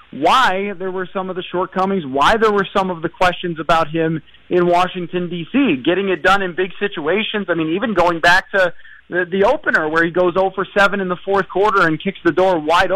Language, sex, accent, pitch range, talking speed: English, male, American, 165-195 Hz, 215 wpm